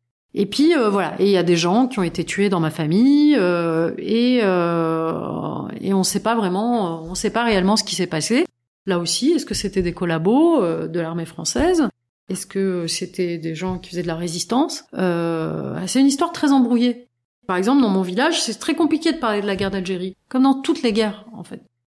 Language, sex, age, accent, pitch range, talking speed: French, female, 30-49, French, 180-235 Hz, 225 wpm